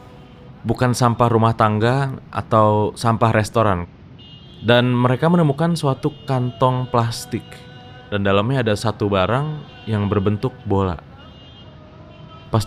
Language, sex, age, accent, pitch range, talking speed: Indonesian, male, 20-39, native, 105-130 Hz, 105 wpm